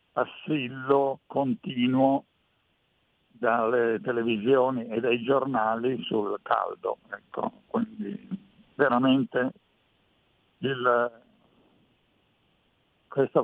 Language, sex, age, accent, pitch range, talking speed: Italian, male, 60-79, native, 120-155 Hz, 65 wpm